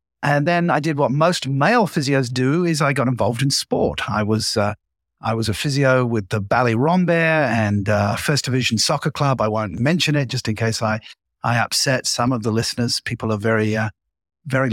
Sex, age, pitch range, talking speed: male, 50-69, 115-150 Hz, 210 wpm